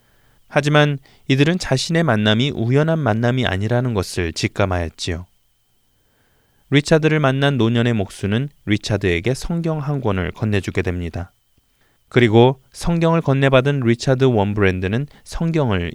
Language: Korean